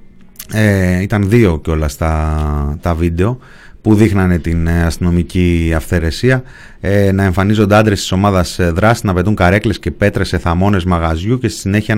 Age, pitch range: 30-49, 90-115 Hz